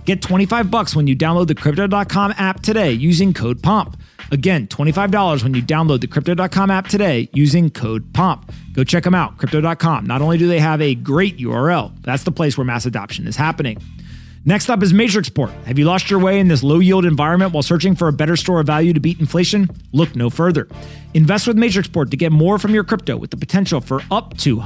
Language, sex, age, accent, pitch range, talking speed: English, male, 30-49, American, 140-190 Hz, 210 wpm